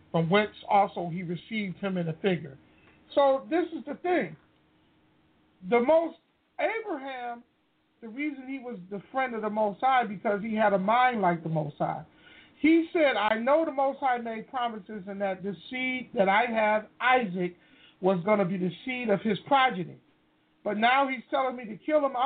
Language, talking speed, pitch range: English, 190 wpm, 190-265 Hz